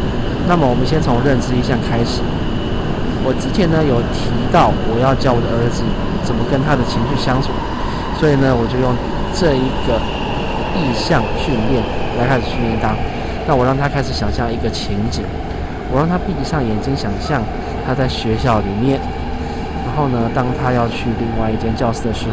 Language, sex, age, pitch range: Chinese, male, 20-39, 105-135 Hz